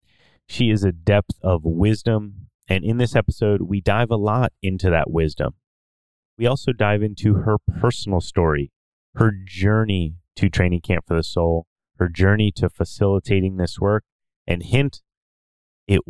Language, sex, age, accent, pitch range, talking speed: English, male, 30-49, American, 90-110 Hz, 155 wpm